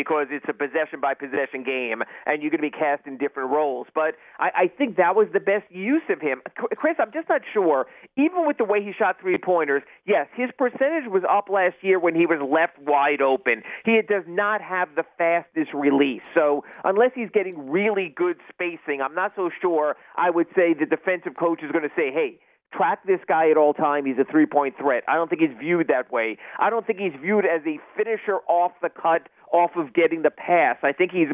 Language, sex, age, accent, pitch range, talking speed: English, male, 40-59, American, 155-215 Hz, 215 wpm